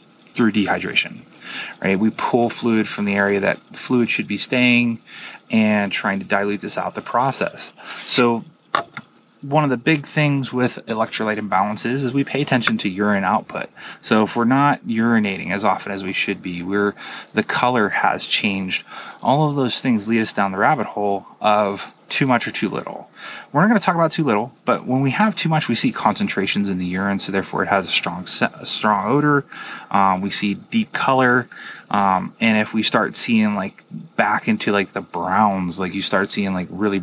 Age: 20-39